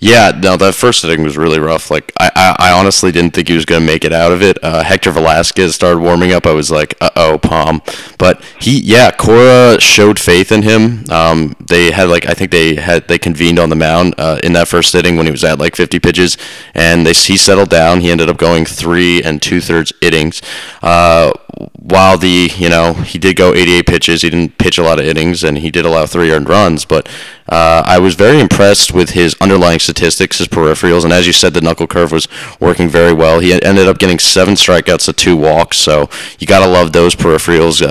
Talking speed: 230 wpm